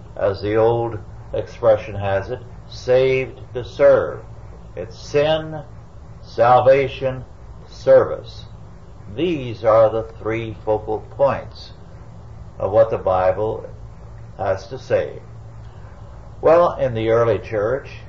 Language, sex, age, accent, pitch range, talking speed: English, male, 60-79, American, 105-115 Hz, 105 wpm